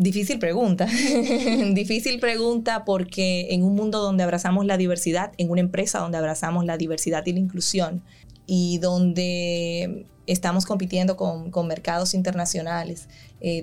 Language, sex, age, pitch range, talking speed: Spanish, female, 20-39, 170-190 Hz, 135 wpm